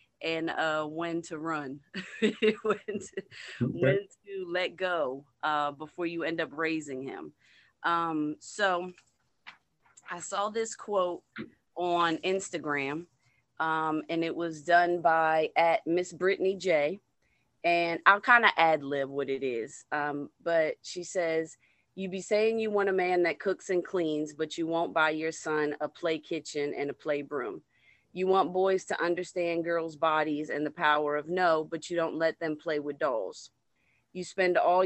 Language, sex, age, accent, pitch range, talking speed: English, female, 30-49, American, 155-180 Hz, 165 wpm